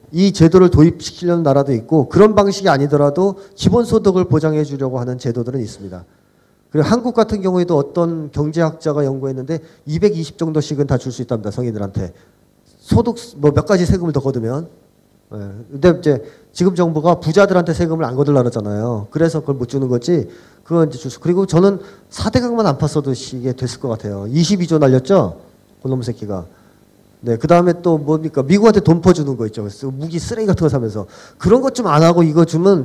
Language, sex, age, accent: Korean, male, 40-59, native